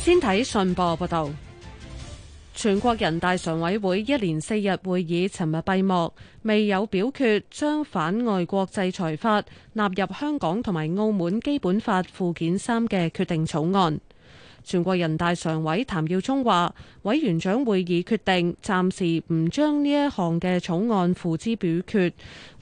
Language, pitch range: Chinese, 170-215 Hz